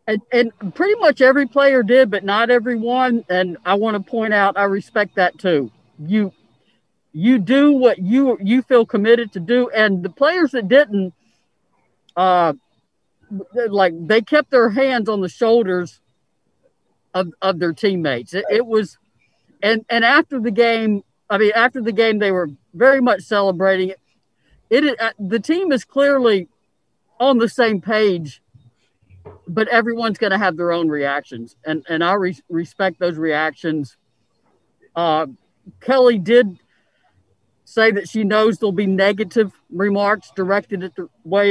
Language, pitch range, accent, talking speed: English, 175-230 Hz, American, 155 wpm